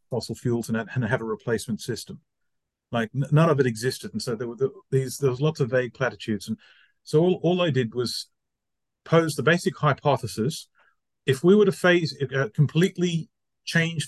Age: 40-59